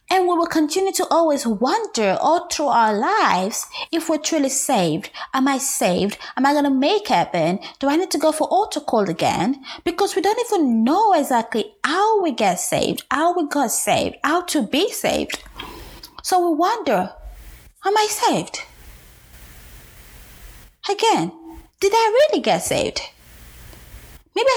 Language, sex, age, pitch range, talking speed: English, female, 20-39, 230-355 Hz, 155 wpm